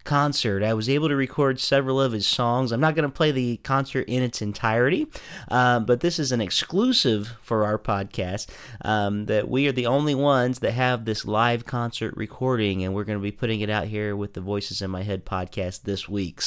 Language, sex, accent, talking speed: English, male, American, 220 wpm